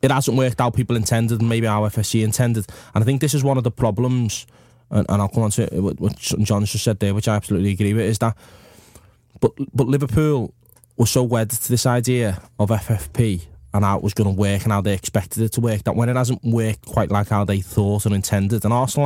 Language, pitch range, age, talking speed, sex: English, 105-125 Hz, 20-39, 240 wpm, male